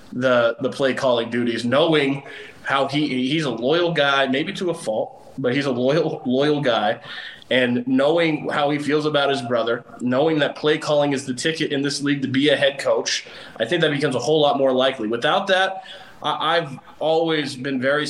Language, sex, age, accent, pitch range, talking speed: English, male, 20-39, American, 125-150 Hz, 200 wpm